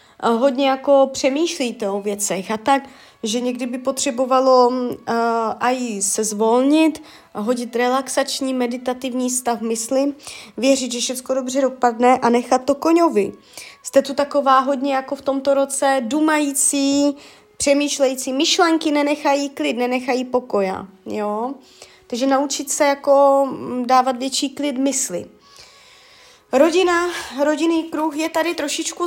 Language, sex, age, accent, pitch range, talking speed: Czech, female, 20-39, native, 240-280 Hz, 120 wpm